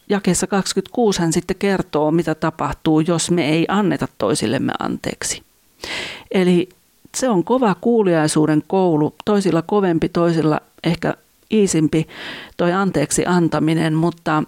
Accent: native